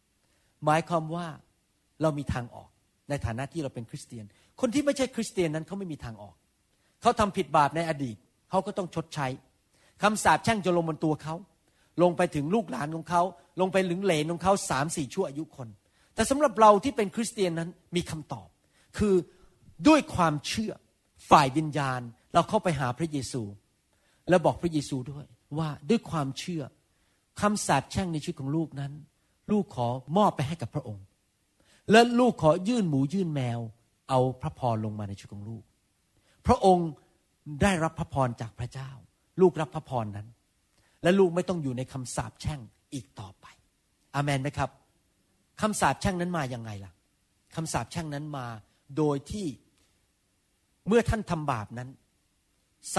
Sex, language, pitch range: male, Thai, 115-175 Hz